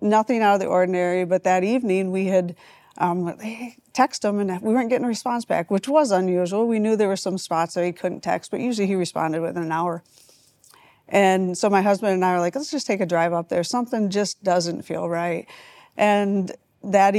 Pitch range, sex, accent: 175-205 Hz, female, American